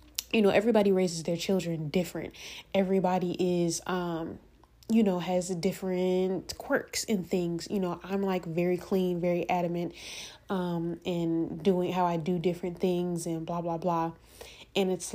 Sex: female